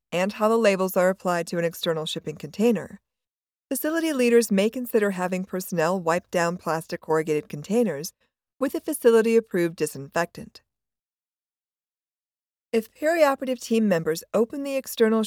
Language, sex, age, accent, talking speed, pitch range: English, female, 50-69, American, 130 wpm, 170-235 Hz